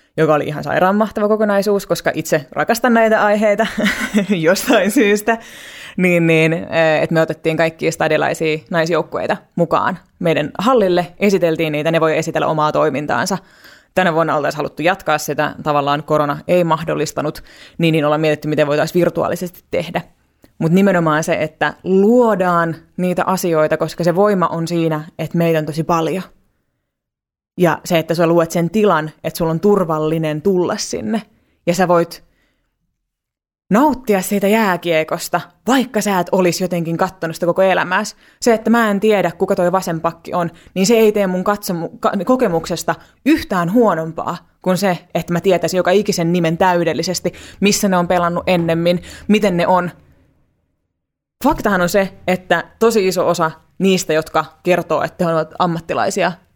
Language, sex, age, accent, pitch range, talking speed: Finnish, female, 20-39, native, 160-195 Hz, 150 wpm